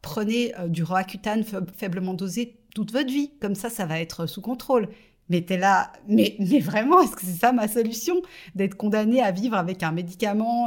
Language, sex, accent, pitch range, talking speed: French, female, French, 165-210 Hz, 185 wpm